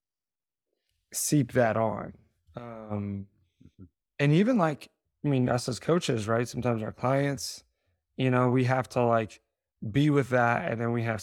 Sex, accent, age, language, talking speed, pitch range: male, American, 20-39, English, 155 wpm, 110-130 Hz